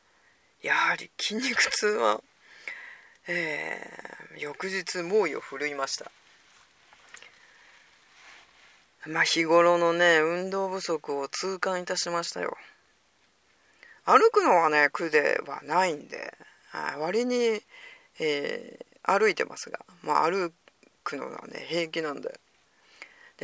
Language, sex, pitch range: Japanese, female, 150-240 Hz